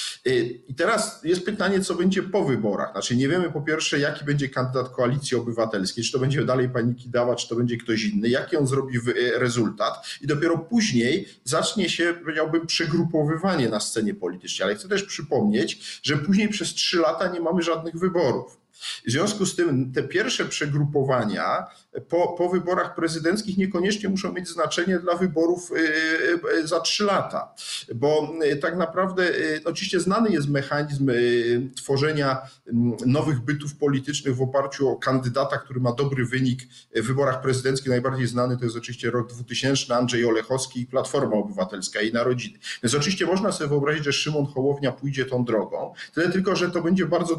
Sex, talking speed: male, 165 wpm